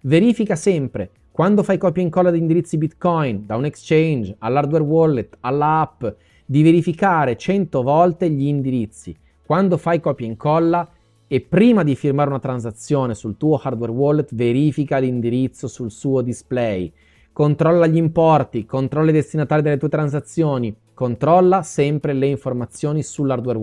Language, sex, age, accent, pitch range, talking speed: Italian, male, 30-49, native, 125-170 Hz, 140 wpm